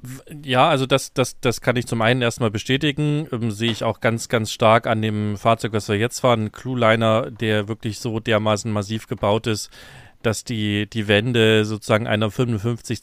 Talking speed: 185 wpm